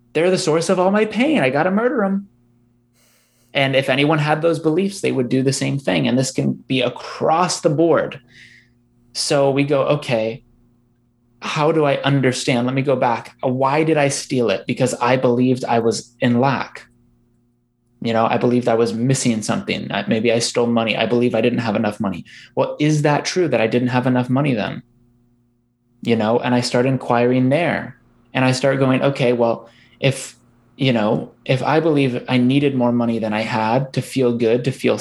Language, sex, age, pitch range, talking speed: English, male, 20-39, 120-150 Hz, 200 wpm